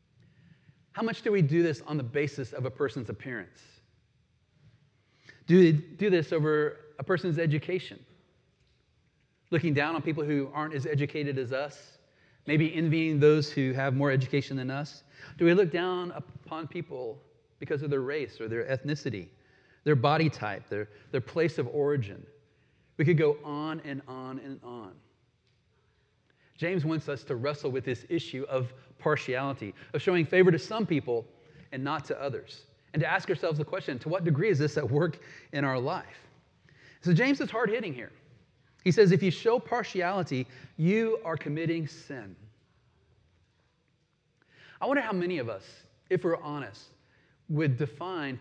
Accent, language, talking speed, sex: American, English, 160 wpm, male